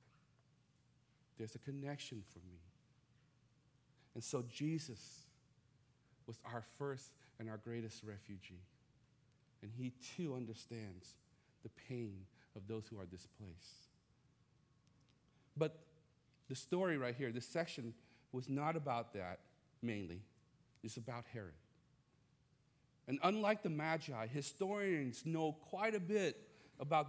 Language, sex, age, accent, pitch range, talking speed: English, male, 40-59, American, 120-160 Hz, 115 wpm